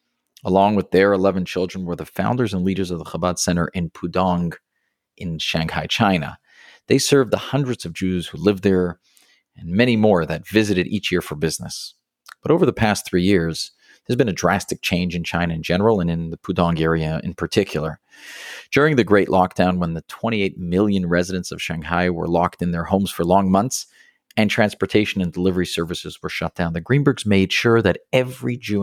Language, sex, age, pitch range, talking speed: English, male, 40-59, 85-105 Hz, 195 wpm